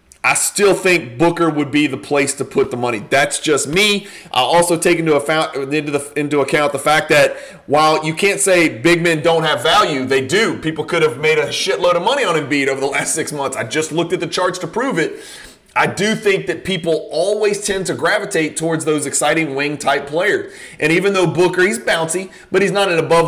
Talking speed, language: 215 wpm, English